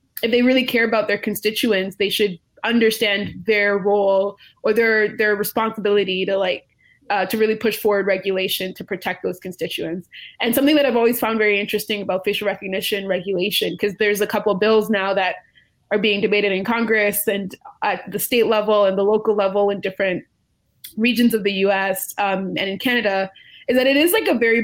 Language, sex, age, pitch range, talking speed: English, female, 20-39, 195-225 Hz, 190 wpm